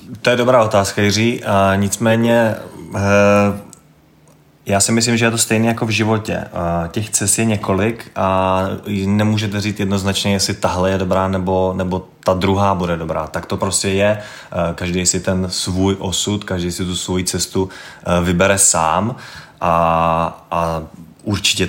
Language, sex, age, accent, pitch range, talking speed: Czech, male, 20-39, native, 90-100 Hz, 150 wpm